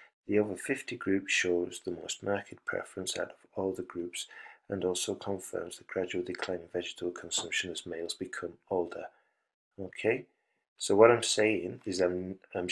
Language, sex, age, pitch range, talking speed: English, male, 40-59, 90-110 Hz, 160 wpm